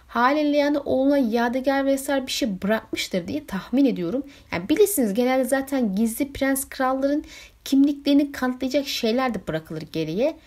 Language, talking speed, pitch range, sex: Turkish, 140 wpm, 185-260 Hz, female